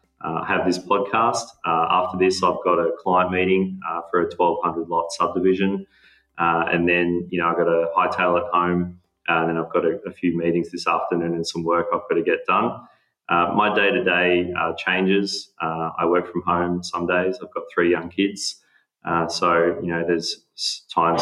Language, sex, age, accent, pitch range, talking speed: English, male, 20-39, Australian, 85-90 Hz, 205 wpm